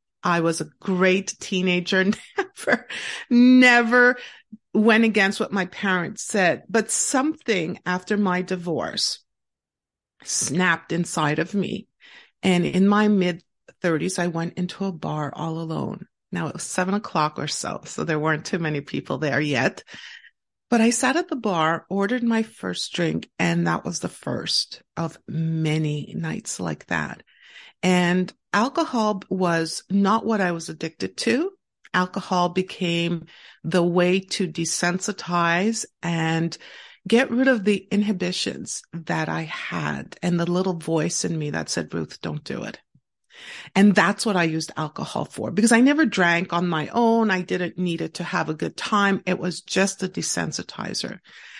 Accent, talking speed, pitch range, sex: American, 155 wpm, 170-215 Hz, female